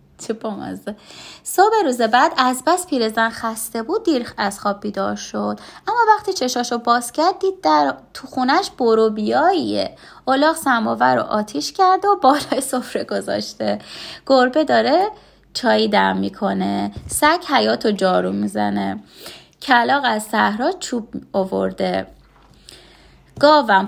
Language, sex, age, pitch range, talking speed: Persian, female, 20-39, 215-330 Hz, 125 wpm